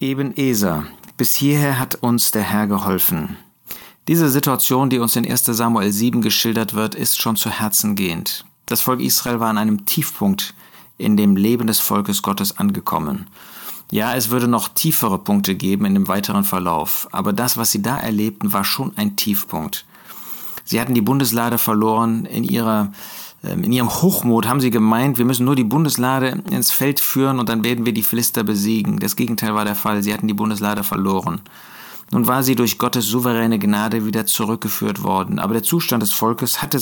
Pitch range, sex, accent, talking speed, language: 105-135 Hz, male, German, 185 wpm, German